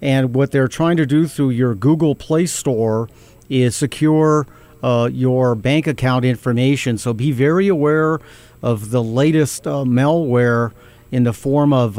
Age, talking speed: 50-69, 155 wpm